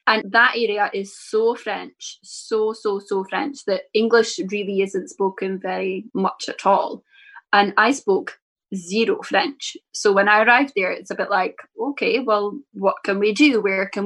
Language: English